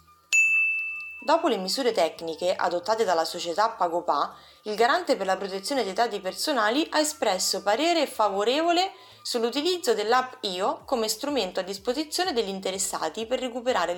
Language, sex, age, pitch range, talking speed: Italian, female, 20-39, 190-280 Hz, 135 wpm